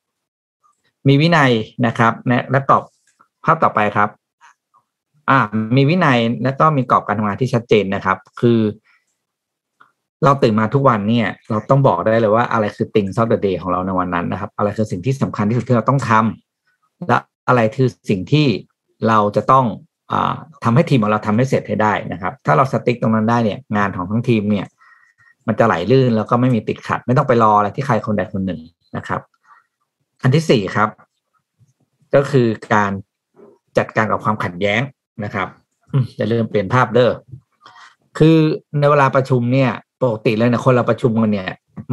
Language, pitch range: Thai, 105-130 Hz